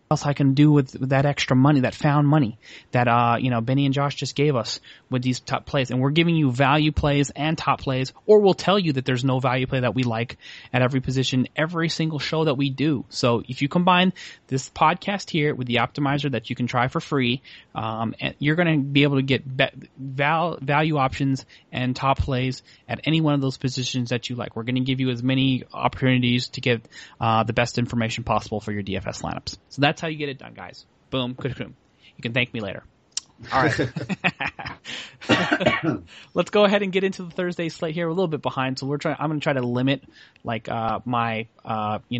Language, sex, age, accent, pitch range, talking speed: English, male, 30-49, American, 125-150 Hz, 230 wpm